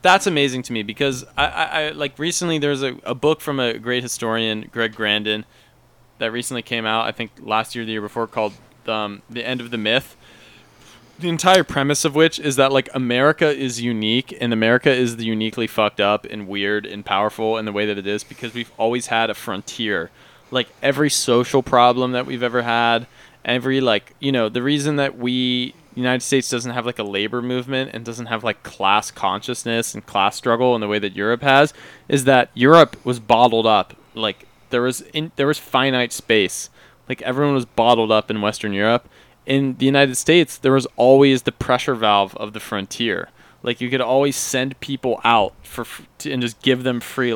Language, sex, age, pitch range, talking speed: English, male, 20-39, 115-135 Hz, 205 wpm